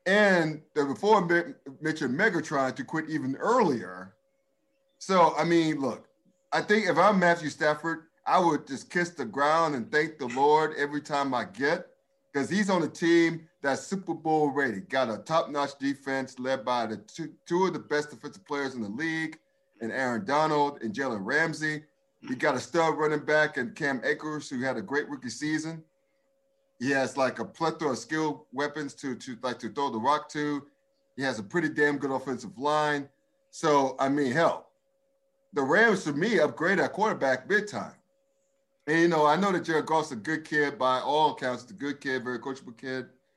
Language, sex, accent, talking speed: English, male, American, 190 wpm